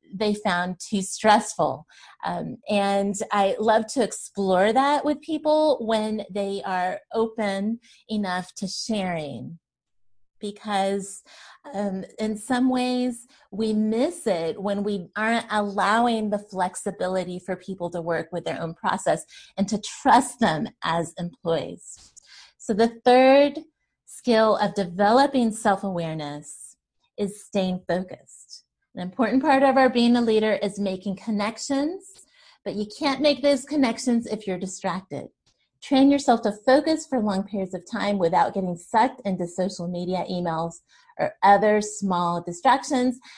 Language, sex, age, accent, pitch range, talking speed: English, female, 30-49, American, 190-240 Hz, 135 wpm